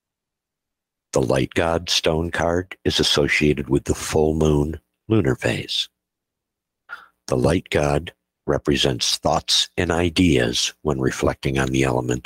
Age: 60-79